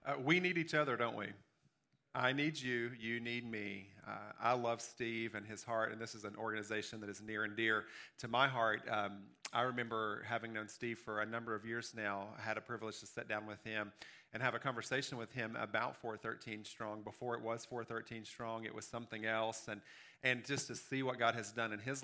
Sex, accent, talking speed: male, American, 225 wpm